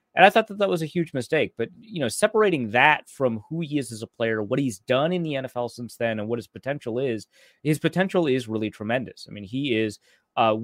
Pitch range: 115-150 Hz